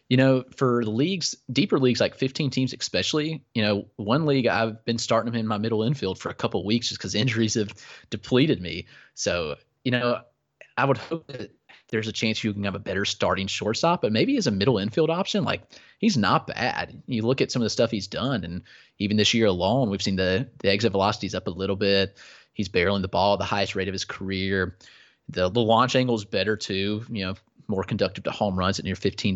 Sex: male